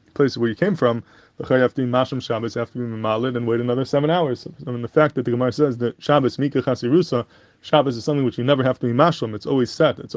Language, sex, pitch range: English, male, 120-145 Hz